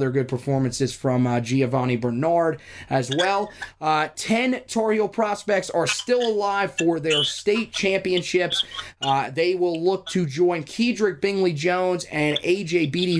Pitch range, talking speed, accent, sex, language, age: 140-180 Hz, 145 wpm, American, male, English, 20-39